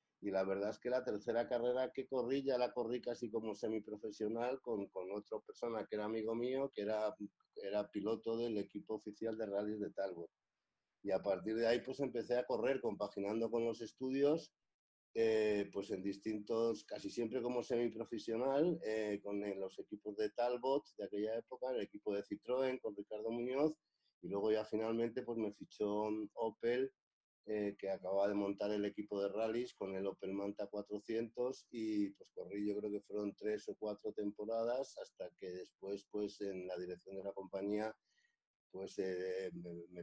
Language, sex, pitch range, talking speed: Spanish, male, 100-120 Hz, 180 wpm